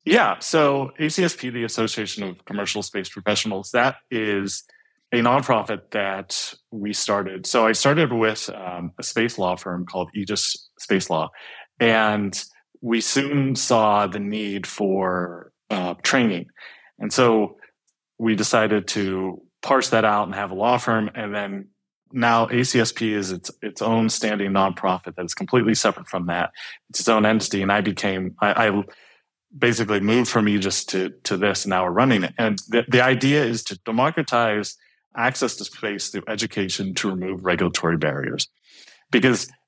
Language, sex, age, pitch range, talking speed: English, male, 30-49, 100-125 Hz, 160 wpm